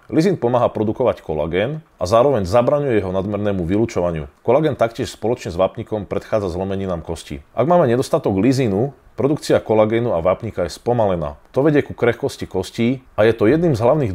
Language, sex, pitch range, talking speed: Slovak, male, 95-125 Hz, 165 wpm